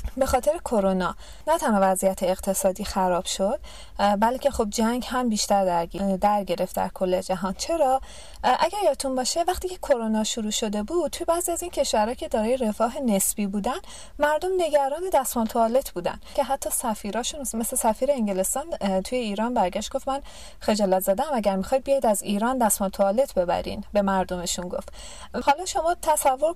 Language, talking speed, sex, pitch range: Persian, 165 wpm, female, 205-280 Hz